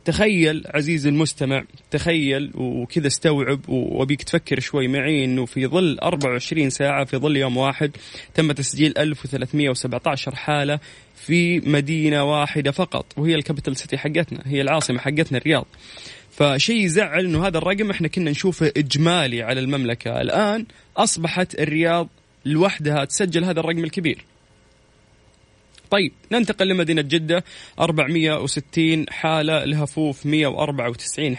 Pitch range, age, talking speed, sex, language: 140-165 Hz, 20-39, 120 wpm, male, Arabic